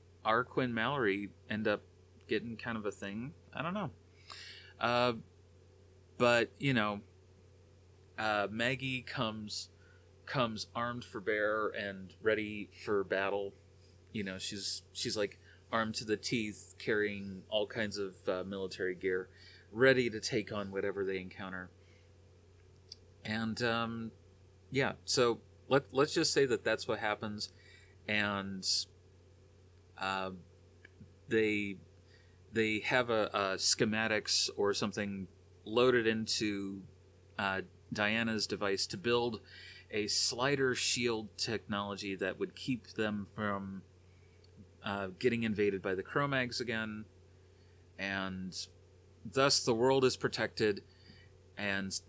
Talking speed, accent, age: 115 wpm, American, 30-49